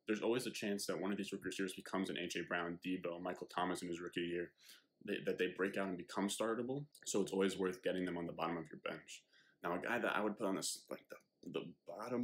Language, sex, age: English, male, 20-39